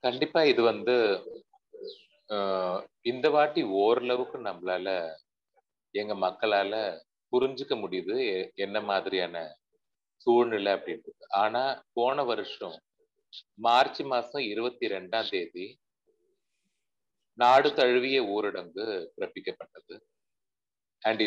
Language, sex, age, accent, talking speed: Tamil, male, 30-49, native, 80 wpm